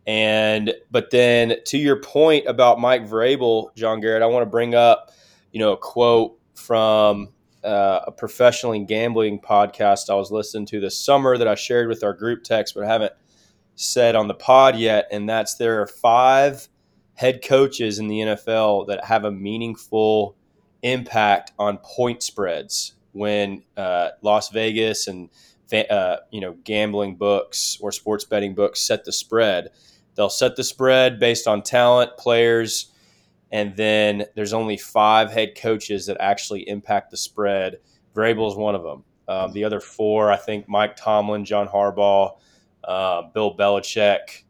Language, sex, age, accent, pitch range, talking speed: English, male, 20-39, American, 100-115 Hz, 165 wpm